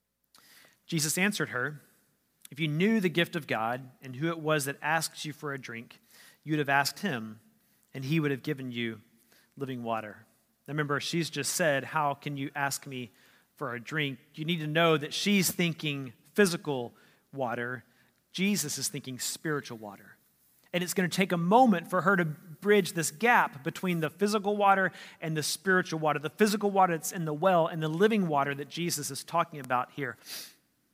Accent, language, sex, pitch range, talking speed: American, English, male, 140-175 Hz, 190 wpm